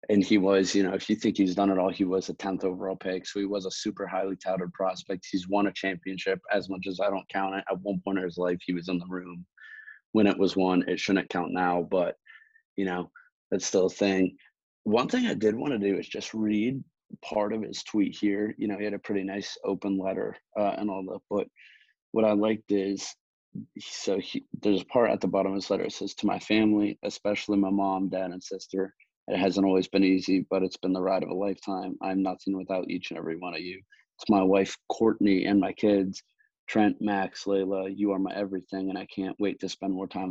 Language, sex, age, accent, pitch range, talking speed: English, male, 30-49, American, 95-100 Hz, 240 wpm